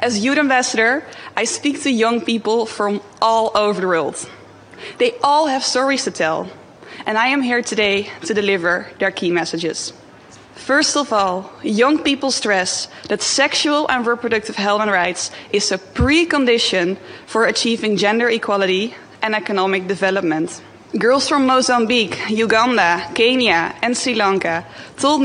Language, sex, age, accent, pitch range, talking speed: Dutch, female, 20-39, Dutch, 195-255 Hz, 145 wpm